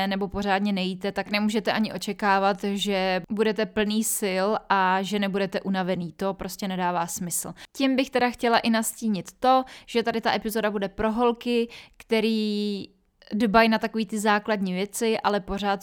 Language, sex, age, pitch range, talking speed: Czech, female, 20-39, 190-220 Hz, 160 wpm